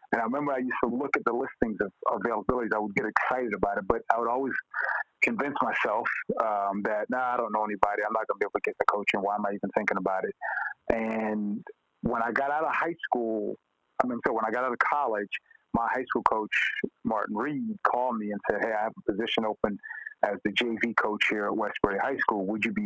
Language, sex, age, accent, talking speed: English, male, 40-59, American, 245 wpm